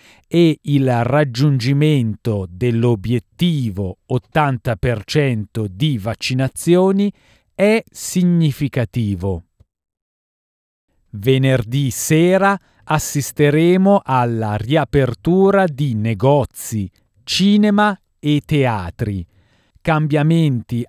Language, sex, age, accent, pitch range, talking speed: Italian, male, 40-59, native, 110-140 Hz, 55 wpm